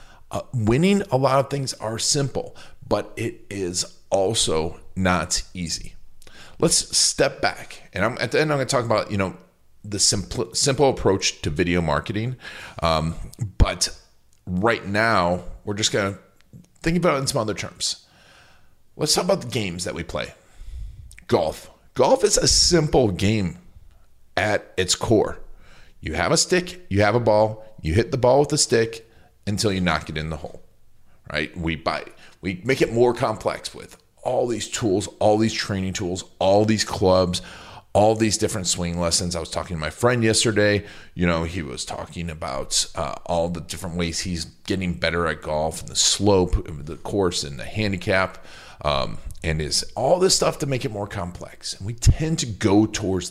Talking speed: 185 wpm